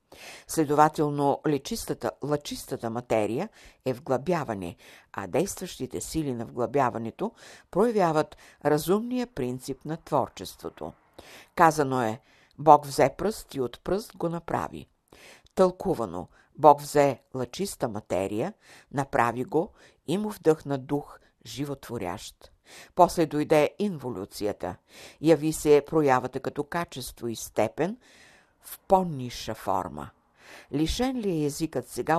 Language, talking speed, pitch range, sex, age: Bulgarian, 105 wpm, 120-160 Hz, female, 60-79